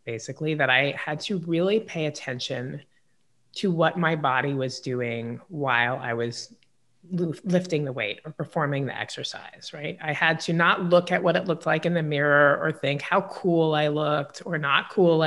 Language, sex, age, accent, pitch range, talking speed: English, female, 30-49, American, 140-170 Hz, 185 wpm